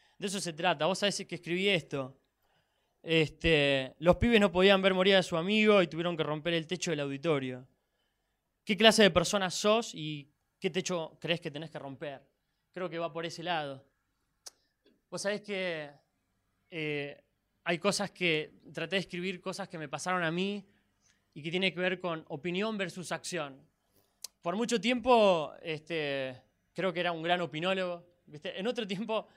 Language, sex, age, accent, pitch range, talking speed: Spanish, male, 20-39, Argentinian, 140-185 Hz, 175 wpm